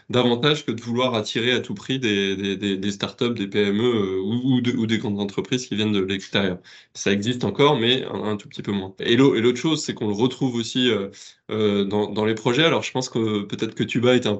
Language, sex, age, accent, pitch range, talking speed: French, male, 20-39, French, 105-125 Hz, 240 wpm